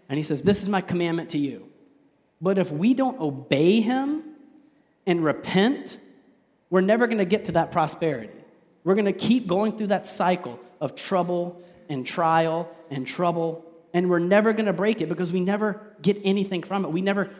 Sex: male